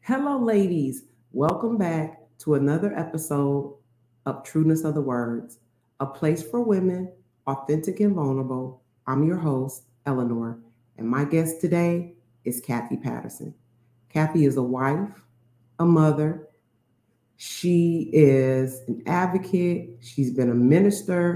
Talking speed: 125 wpm